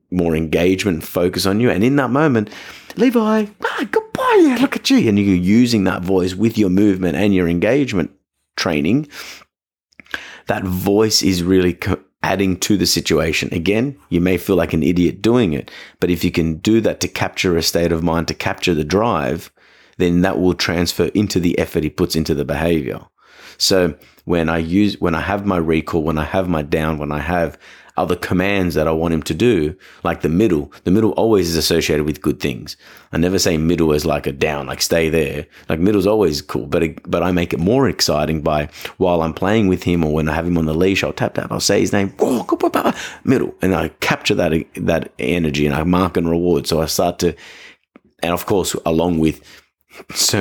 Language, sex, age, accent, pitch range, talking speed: English, male, 30-49, Australian, 80-95 Hz, 210 wpm